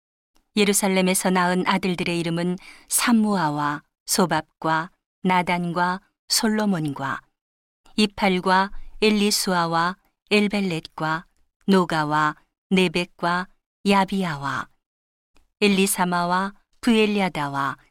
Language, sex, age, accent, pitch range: Korean, female, 40-59, native, 170-200 Hz